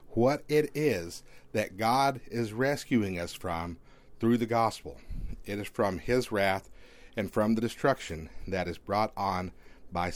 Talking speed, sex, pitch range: 155 wpm, male, 100-135 Hz